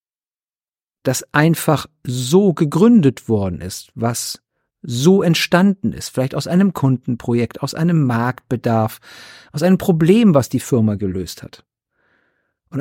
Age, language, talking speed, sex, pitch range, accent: 50-69, German, 120 wpm, male, 115-170 Hz, German